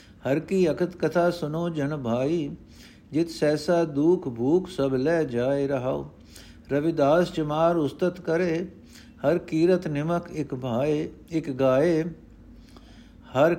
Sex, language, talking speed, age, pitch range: male, Punjabi, 120 wpm, 60-79, 135-175 Hz